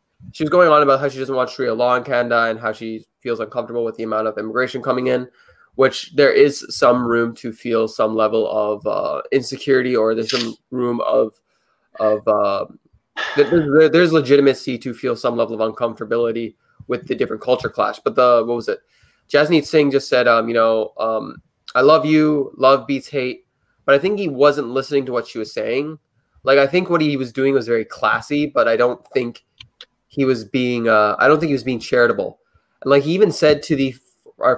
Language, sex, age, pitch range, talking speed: English, male, 20-39, 115-140 Hz, 210 wpm